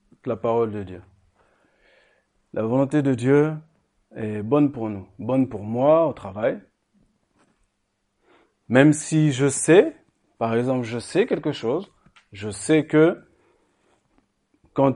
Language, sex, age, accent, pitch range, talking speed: French, male, 40-59, French, 100-140 Hz, 125 wpm